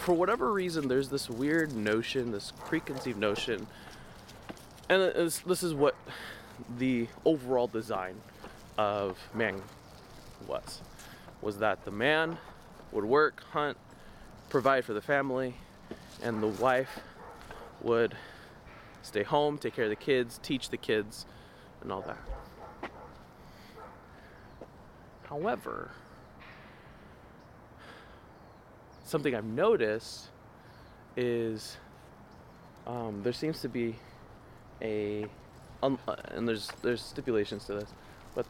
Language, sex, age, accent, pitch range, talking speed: English, male, 20-39, American, 110-145 Hz, 105 wpm